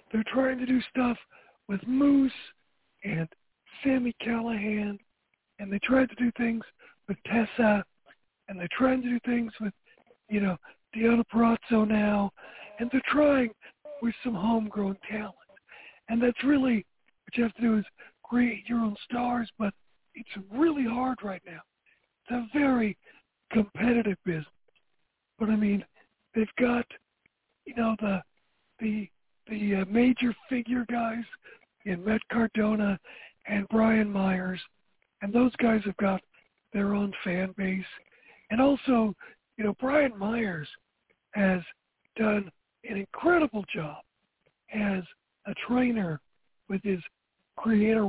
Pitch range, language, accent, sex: 200-240 Hz, English, American, male